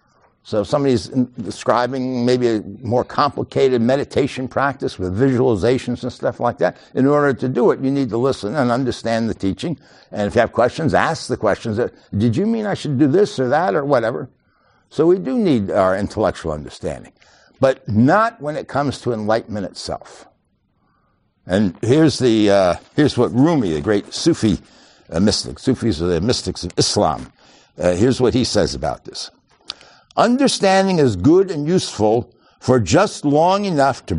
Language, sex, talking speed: English, male, 175 wpm